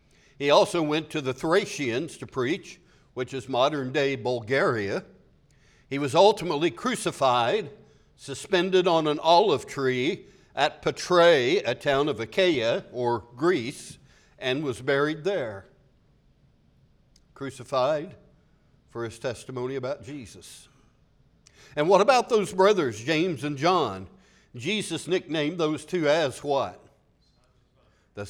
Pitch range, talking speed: 115-165 Hz, 115 wpm